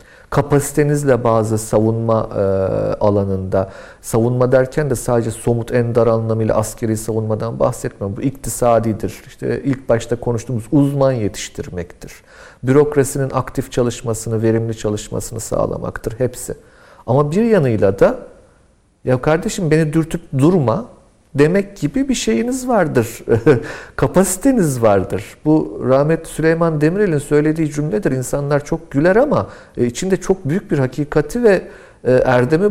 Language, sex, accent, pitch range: Turkish, male, native, 115-165 Hz